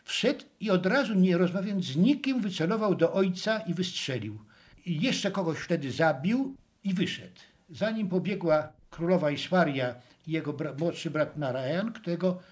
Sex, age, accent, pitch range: male, 60-79, native, 140-185 Hz